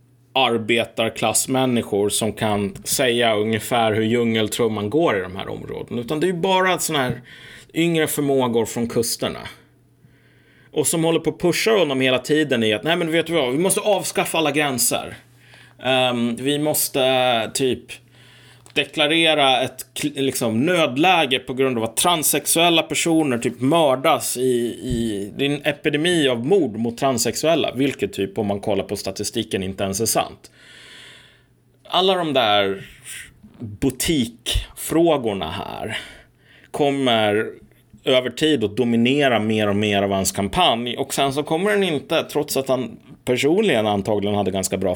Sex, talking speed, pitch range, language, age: male, 145 wpm, 115-150 Hz, Swedish, 30-49